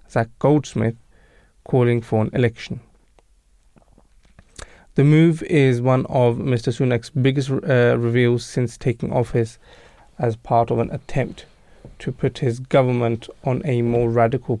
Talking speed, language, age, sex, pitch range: 130 wpm, English, 20-39, male, 115-135 Hz